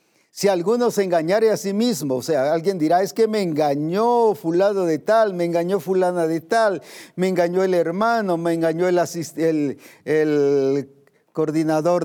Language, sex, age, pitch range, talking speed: Spanish, male, 50-69, 150-190 Hz, 170 wpm